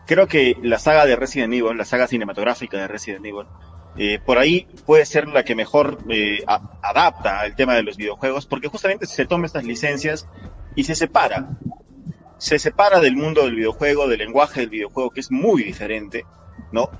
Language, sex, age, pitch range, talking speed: Spanish, male, 30-49, 105-145 Hz, 185 wpm